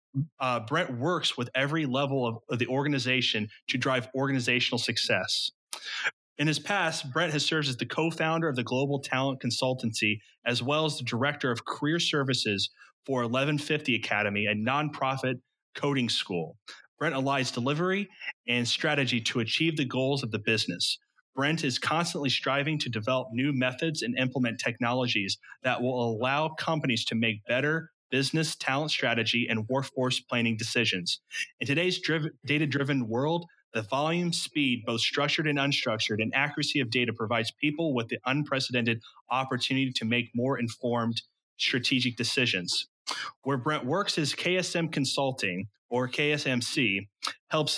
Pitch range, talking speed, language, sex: 120-150 Hz, 145 wpm, English, male